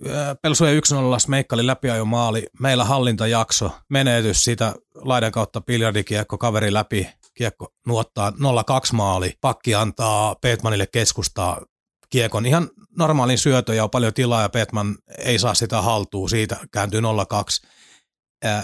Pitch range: 105-130 Hz